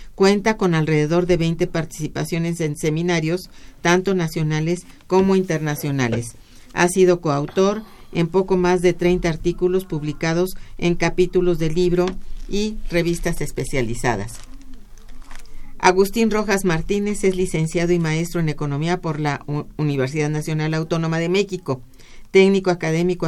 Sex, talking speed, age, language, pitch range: female, 120 wpm, 50-69, Spanish, 155-180 Hz